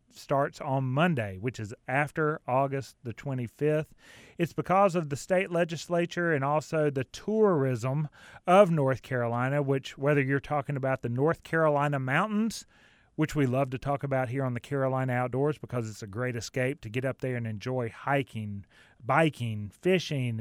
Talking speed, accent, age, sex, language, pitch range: 165 wpm, American, 30-49, male, English, 125-160 Hz